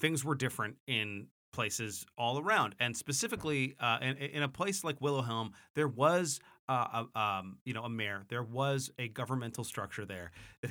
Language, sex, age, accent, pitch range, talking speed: English, male, 30-49, American, 115-145 Hz, 180 wpm